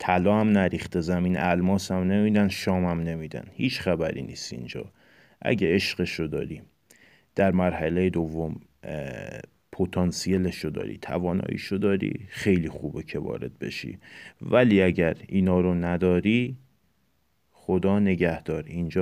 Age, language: 30-49, Persian